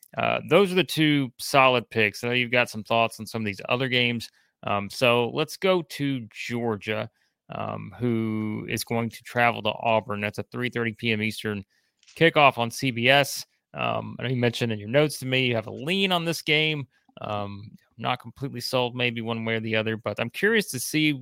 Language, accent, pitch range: English, American, 110-130 Hz